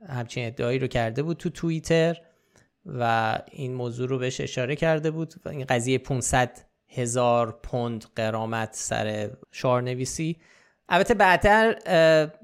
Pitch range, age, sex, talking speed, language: 120-160 Hz, 20-39, male, 130 wpm, Persian